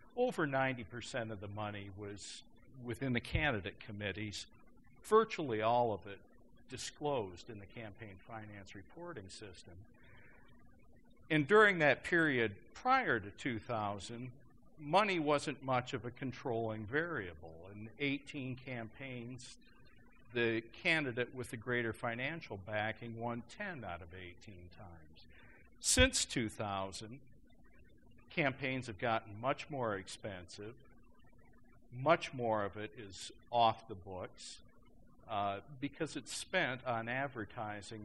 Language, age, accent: English, 50-69, American